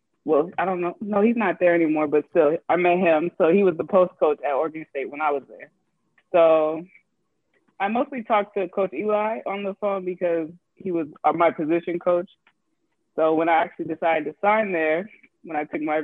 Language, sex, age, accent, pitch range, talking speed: English, female, 20-39, American, 160-205 Hz, 205 wpm